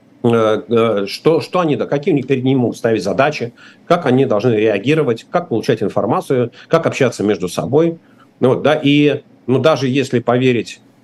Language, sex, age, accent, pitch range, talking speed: Russian, male, 40-59, native, 110-150 Hz, 145 wpm